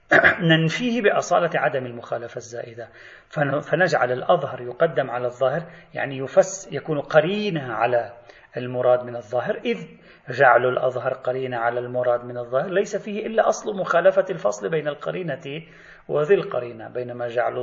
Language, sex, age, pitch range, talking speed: Arabic, male, 40-59, 120-180 Hz, 130 wpm